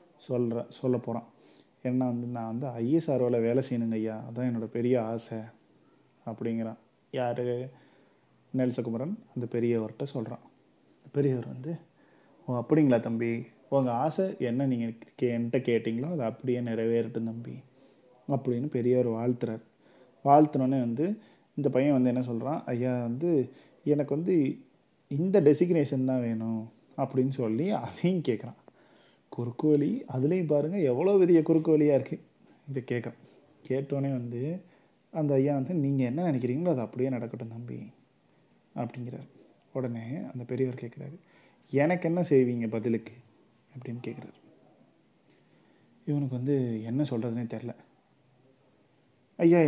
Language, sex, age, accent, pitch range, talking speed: Tamil, male, 30-49, native, 120-145 Hz, 115 wpm